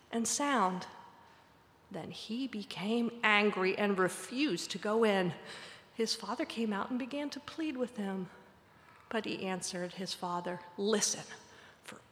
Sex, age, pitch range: female, 40-59, 210-310 Hz